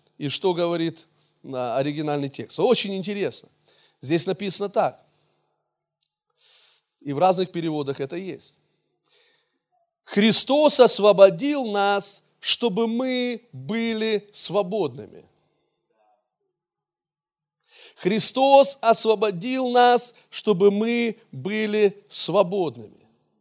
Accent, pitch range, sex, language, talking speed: native, 185-245 Hz, male, Russian, 75 wpm